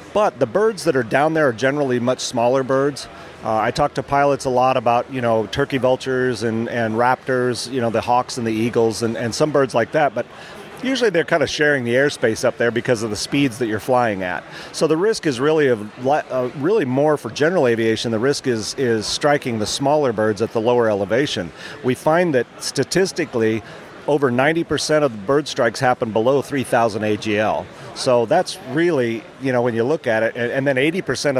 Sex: male